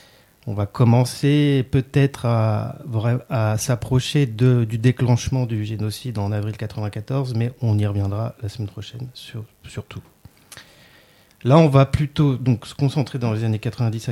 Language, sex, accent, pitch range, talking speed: French, male, French, 110-135 Hz, 135 wpm